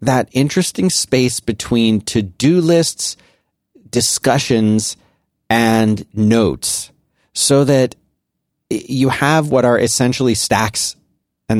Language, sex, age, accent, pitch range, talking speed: English, male, 40-59, American, 105-125 Hz, 95 wpm